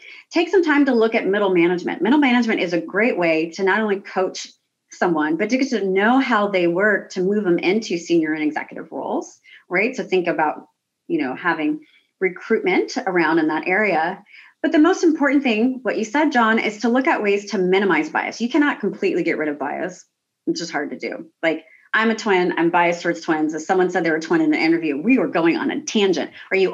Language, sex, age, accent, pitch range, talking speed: English, female, 30-49, American, 185-295 Hz, 225 wpm